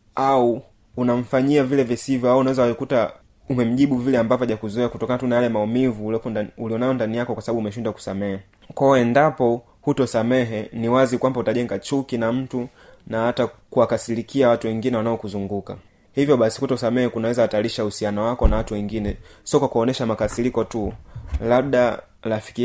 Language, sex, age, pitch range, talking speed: Swahili, male, 20-39, 105-125 Hz, 155 wpm